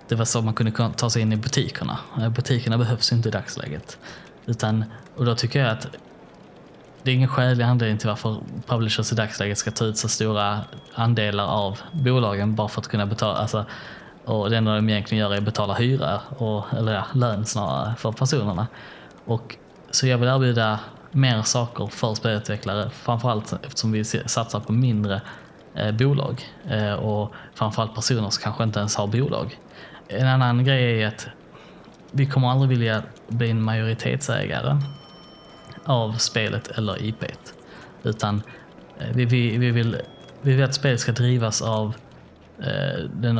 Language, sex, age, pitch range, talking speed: Swedish, male, 10-29, 110-125 Hz, 165 wpm